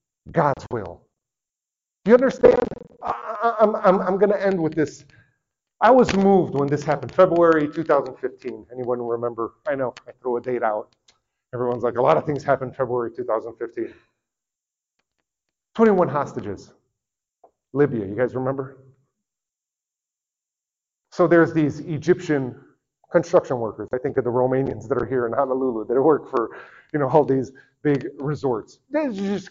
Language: English